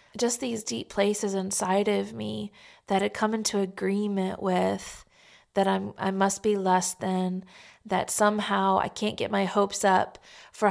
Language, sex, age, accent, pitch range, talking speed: English, female, 20-39, American, 185-210 Hz, 165 wpm